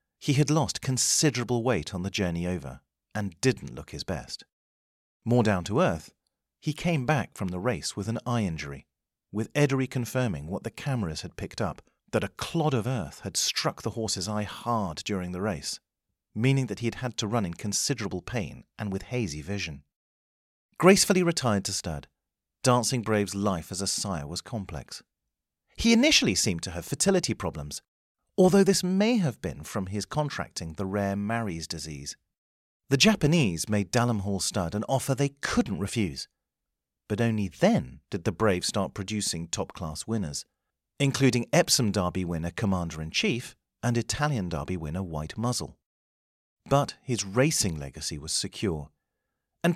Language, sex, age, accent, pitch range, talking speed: English, male, 40-59, British, 90-130 Hz, 165 wpm